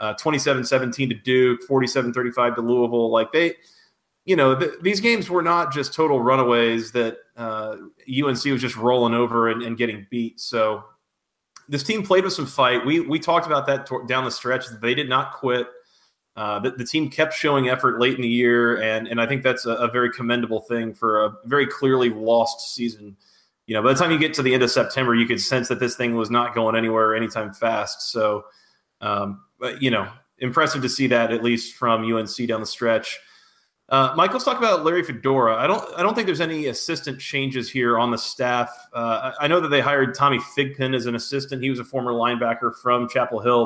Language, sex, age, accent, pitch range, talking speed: English, male, 30-49, American, 120-140 Hz, 220 wpm